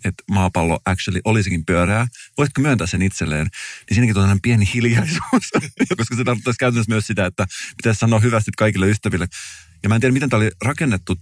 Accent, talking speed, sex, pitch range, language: native, 185 wpm, male, 95-120 Hz, Finnish